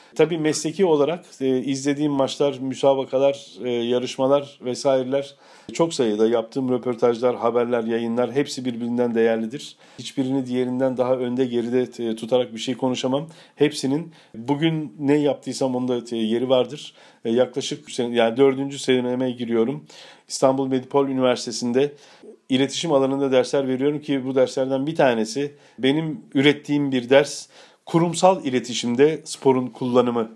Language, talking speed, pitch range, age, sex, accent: Turkish, 120 wpm, 125-140 Hz, 40-59, male, native